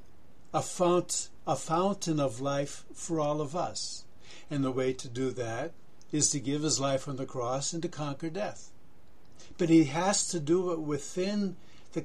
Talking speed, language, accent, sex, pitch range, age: 175 wpm, English, American, male, 120-165 Hz, 60-79